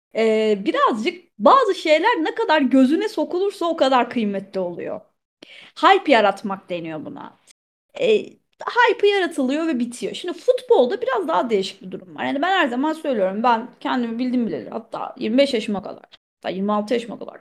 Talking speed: 160 wpm